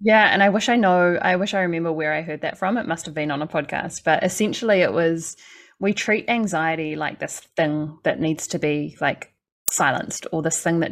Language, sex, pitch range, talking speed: English, female, 160-185 Hz, 225 wpm